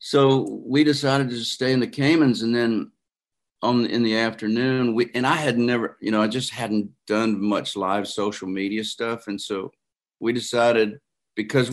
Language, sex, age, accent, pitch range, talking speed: English, male, 50-69, American, 105-120 Hz, 190 wpm